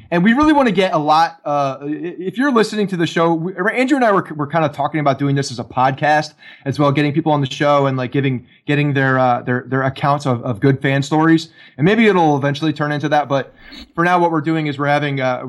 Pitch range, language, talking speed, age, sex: 135-155 Hz, English, 265 wpm, 20-39, male